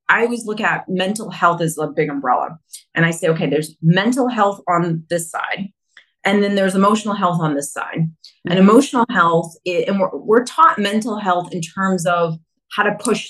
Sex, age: female, 30-49